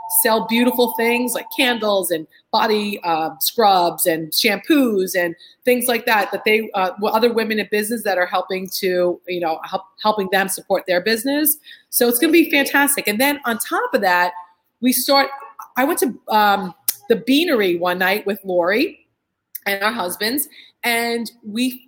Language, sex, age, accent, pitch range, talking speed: English, female, 30-49, American, 200-265 Hz, 170 wpm